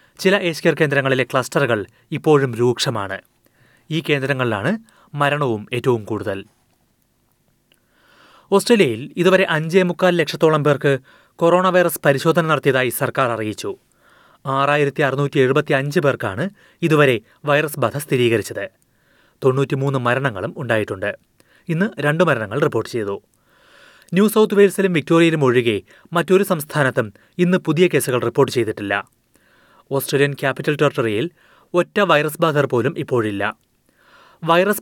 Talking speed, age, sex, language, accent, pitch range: 105 wpm, 30-49, male, Malayalam, native, 130-170 Hz